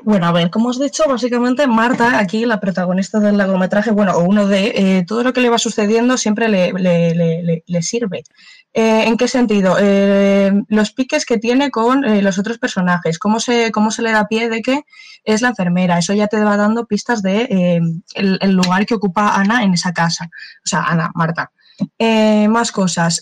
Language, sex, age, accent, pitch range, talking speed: Spanish, female, 20-39, Spanish, 185-225 Hz, 205 wpm